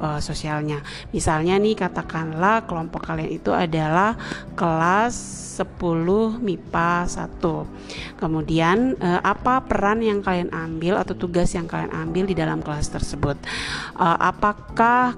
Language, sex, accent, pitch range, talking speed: Indonesian, female, native, 160-195 Hz, 110 wpm